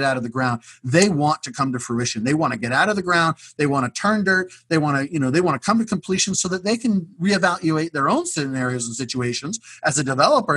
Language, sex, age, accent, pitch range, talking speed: English, male, 40-59, American, 150-220 Hz, 265 wpm